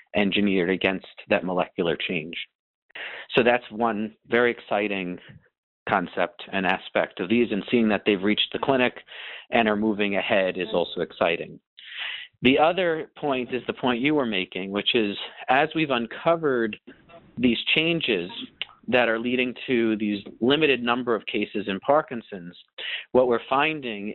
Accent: American